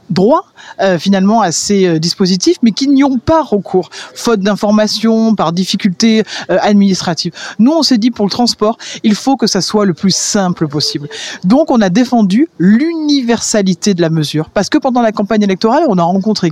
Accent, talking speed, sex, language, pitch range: French, 185 wpm, female, French, 185-230 Hz